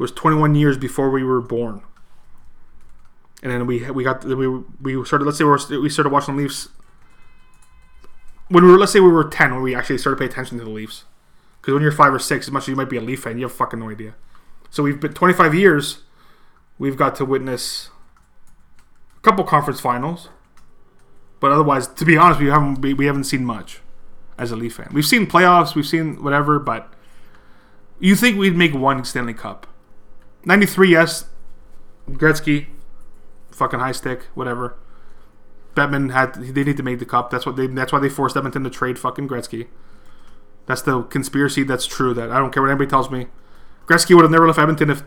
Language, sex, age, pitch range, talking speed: English, male, 20-39, 120-150 Hz, 205 wpm